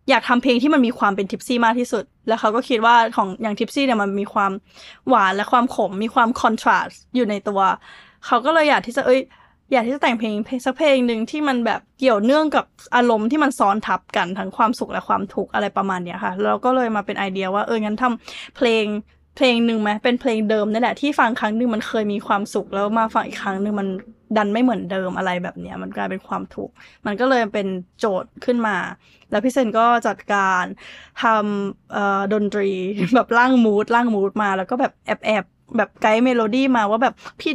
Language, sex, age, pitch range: Thai, female, 10-29, 205-250 Hz